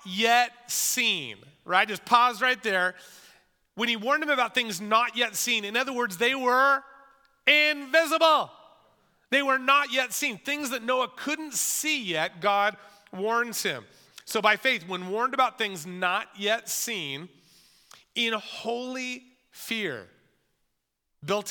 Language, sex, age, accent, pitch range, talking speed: English, male, 40-59, American, 200-270 Hz, 140 wpm